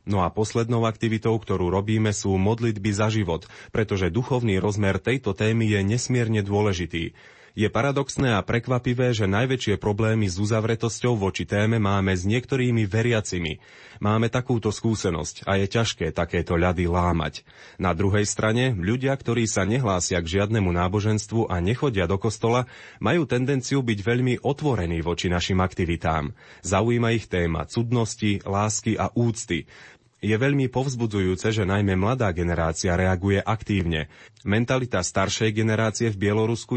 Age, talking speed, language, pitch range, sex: 30-49, 140 wpm, Slovak, 95-115 Hz, male